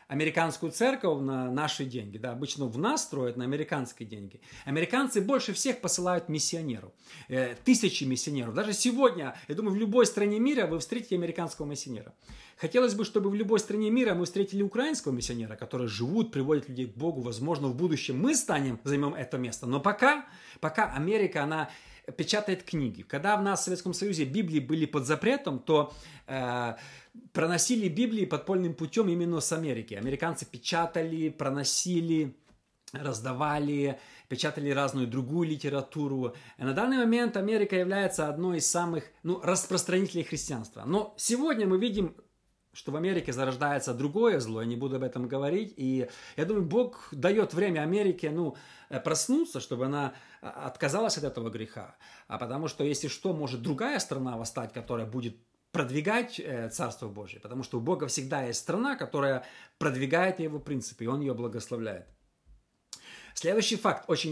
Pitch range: 130-190 Hz